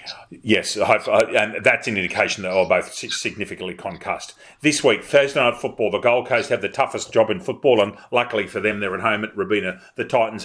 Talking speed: 220 wpm